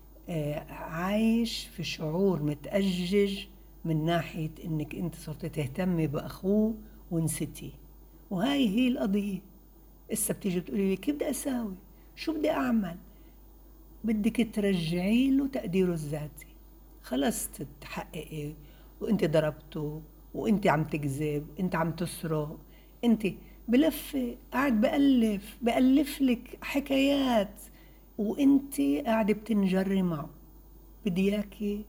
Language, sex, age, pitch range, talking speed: Arabic, female, 60-79, 160-230 Hz, 95 wpm